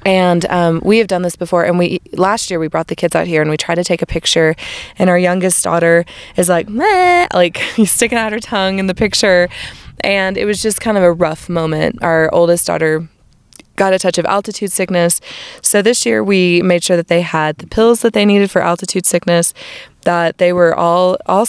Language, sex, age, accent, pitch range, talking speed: English, female, 20-39, American, 170-200 Hz, 220 wpm